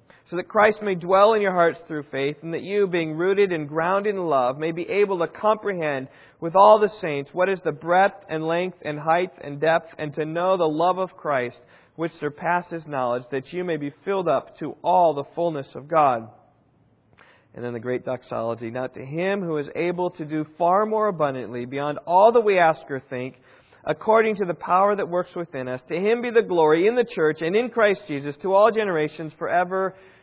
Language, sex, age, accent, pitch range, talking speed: English, male, 40-59, American, 130-180 Hz, 210 wpm